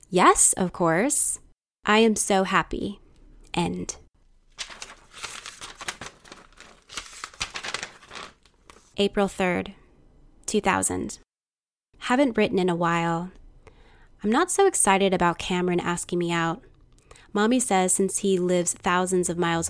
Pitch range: 175-220 Hz